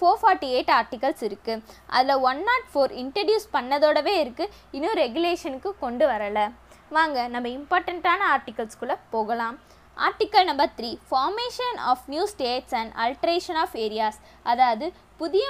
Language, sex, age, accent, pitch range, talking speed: Tamil, female, 20-39, native, 235-360 Hz, 130 wpm